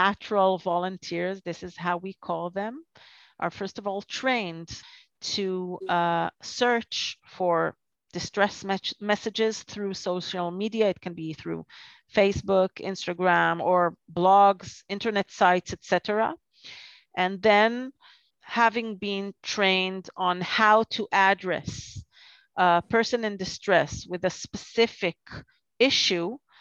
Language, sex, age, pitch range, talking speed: English, female, 40-59, 180-220 Hz, 115 wpm